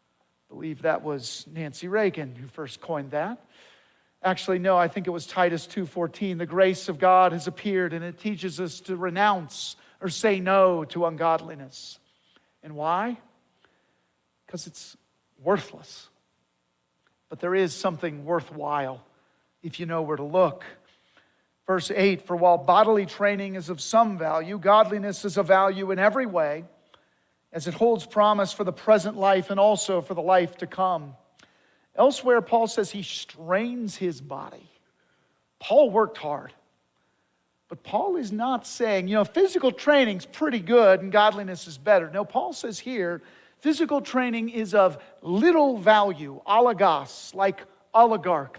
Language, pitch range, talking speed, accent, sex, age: English, 160-210 Hz, 150 wpm, American, male, 50-69